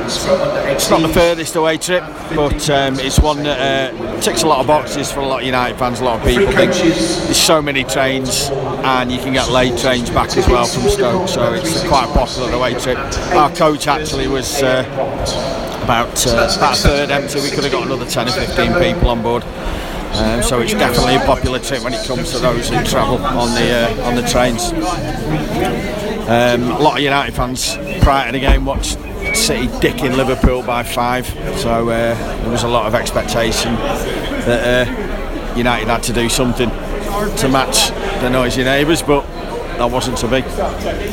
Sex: male